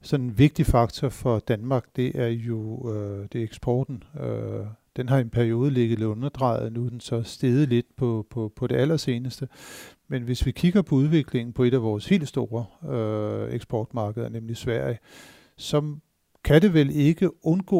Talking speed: 180 wpm